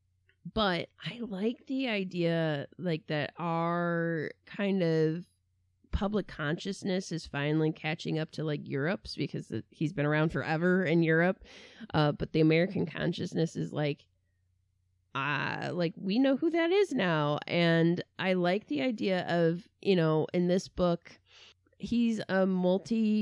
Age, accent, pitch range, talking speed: 20-39, American, 150-195 Hz, 145 wpm